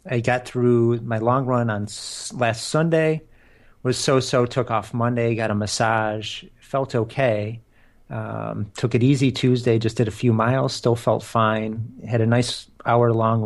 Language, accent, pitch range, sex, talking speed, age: English, American, 110-125 Hz, male, 160 wpm, 30-49